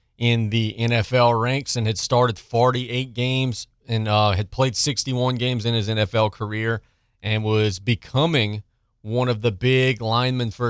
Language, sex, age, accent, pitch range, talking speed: English, male, 30-49, American, 105-120 Hz, 155 wpm